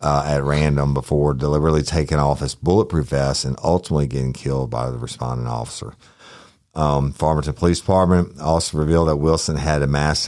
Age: 50-69